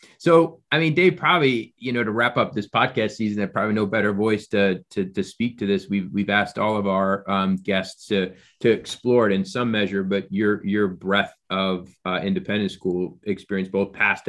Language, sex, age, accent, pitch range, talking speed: English, male, 30-49, American, 95-110 Hz, 210 wpm